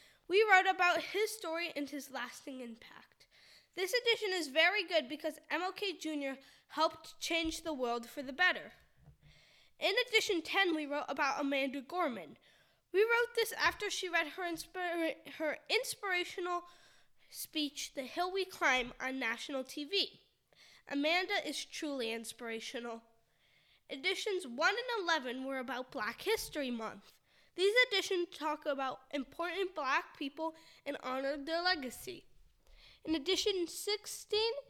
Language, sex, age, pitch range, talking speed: English, female, 10-29, 275-365 Hz, 130 wpm